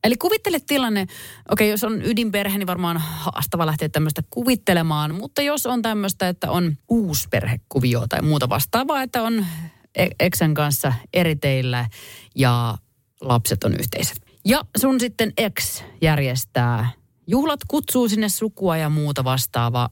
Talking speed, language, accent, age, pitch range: 140 wpm, Finnish, native, 30-49, 120-205 Hz